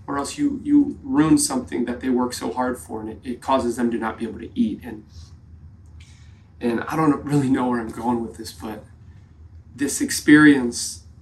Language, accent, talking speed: English, American, 200 wpm